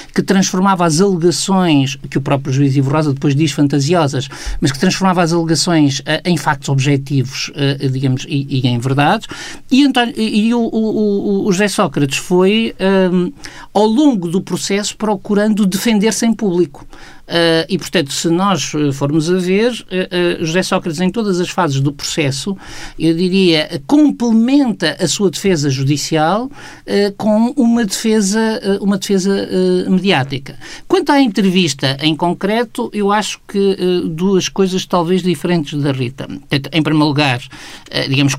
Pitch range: 140-195 Hz